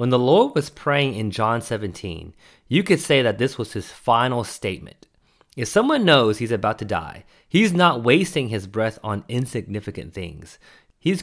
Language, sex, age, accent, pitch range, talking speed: English, male, 30-49, American, 105-140 Hz, 175 wpm